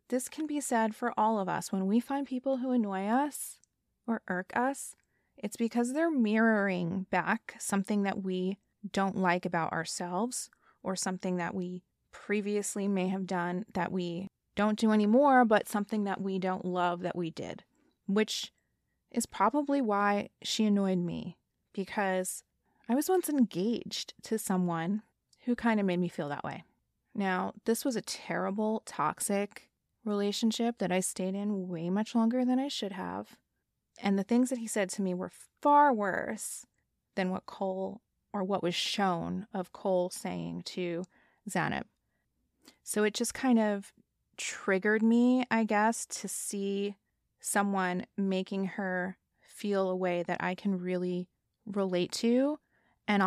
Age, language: 20-39, English